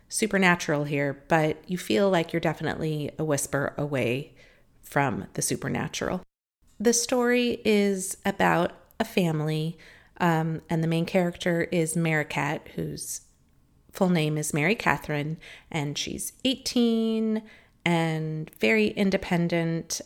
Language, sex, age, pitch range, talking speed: English, female, 30-49, 150-180 Hz, 115 wpm